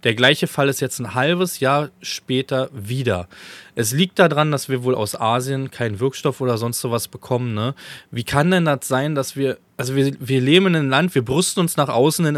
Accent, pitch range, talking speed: German, 125-160 Hz, 220 wpm